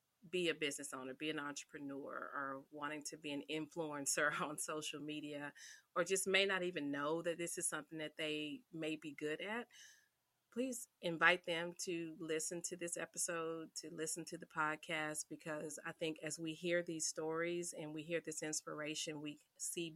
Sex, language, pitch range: female, English, 145-170 Hz